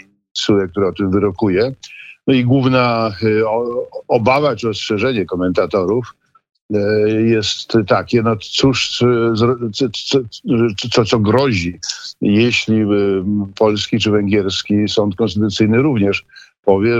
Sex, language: male, Polish